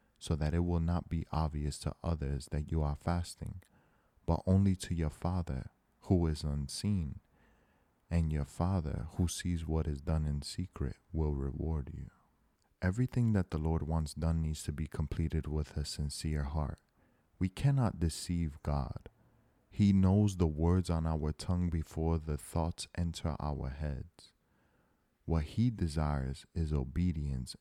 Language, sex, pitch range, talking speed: English, male, 75-90 Hz, 150 wpm